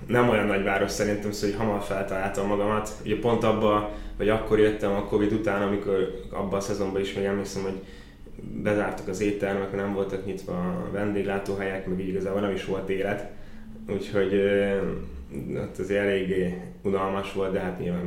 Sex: male